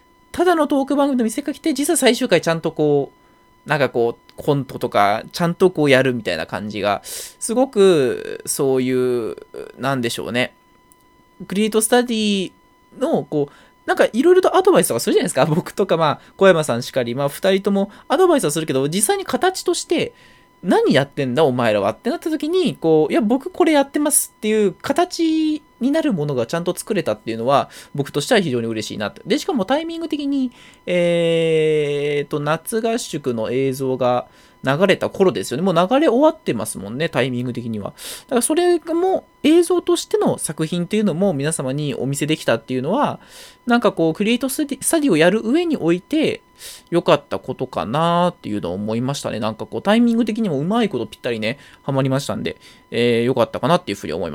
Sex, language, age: male, Japanese, 20-39